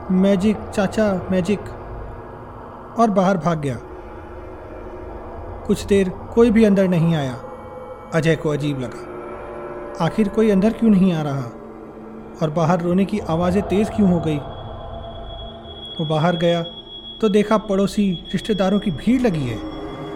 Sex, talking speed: male, 135 wpm